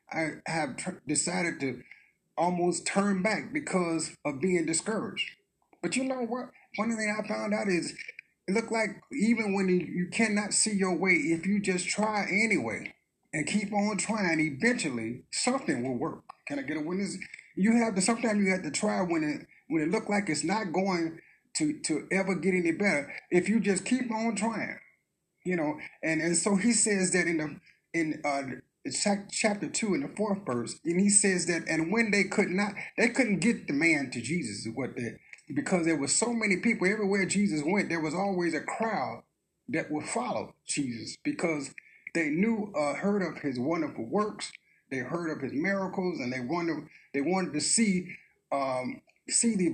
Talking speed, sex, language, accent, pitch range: 195 wpm, male, English, American, 165-215 Hz